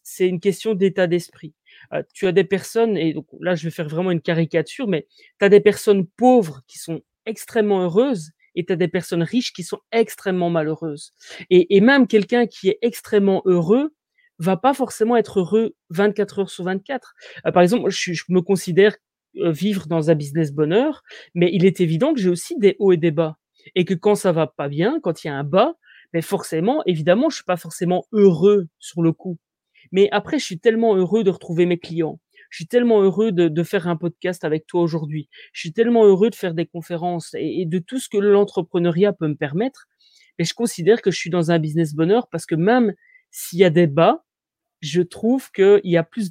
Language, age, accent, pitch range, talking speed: French, 30-49, French, 170-210 Hz, 220 wpm